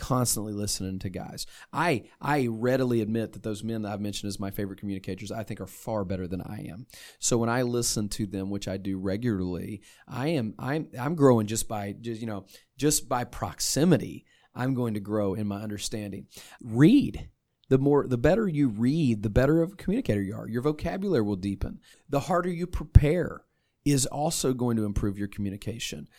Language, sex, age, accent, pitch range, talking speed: English, male, 30-49, American, 105-130 Hz, 195 wpm